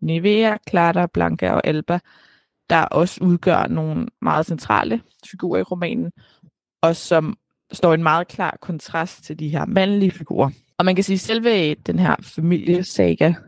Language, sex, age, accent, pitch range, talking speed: Danish, female, 20-39, native, 155-185 Hz, 160 wpm